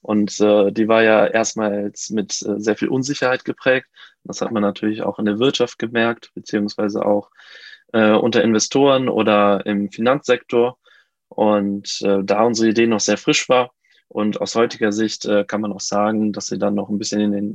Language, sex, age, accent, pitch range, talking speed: German, male, 20-39, German, 105-120 Hz, 190 wpm